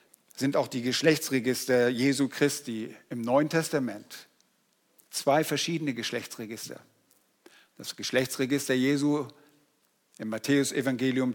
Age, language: 50-69, German